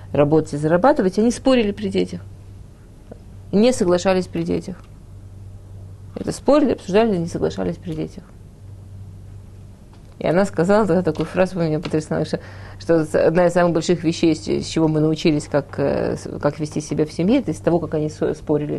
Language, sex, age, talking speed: Russian, female, 30-49, 155 wpm